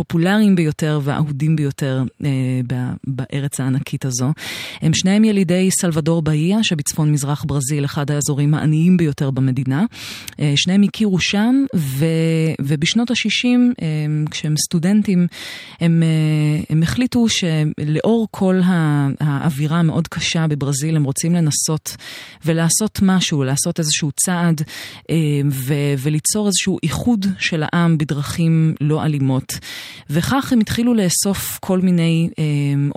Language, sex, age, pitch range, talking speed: Hebrew, female, 30-49, 145-175 Hz, 125 wpm